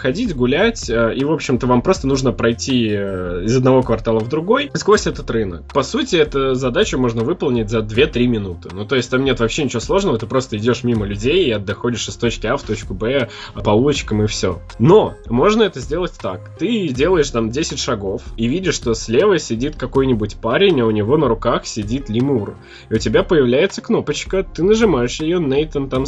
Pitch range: 110-135 Hz